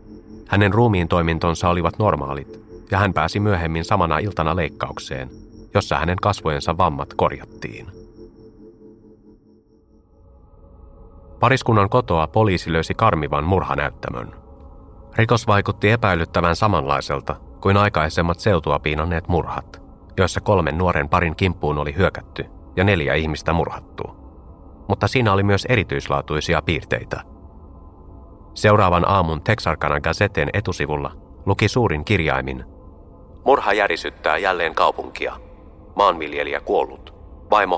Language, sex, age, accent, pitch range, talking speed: Finnish, male, 30-49, native, 75-105 Hz, 100 wpm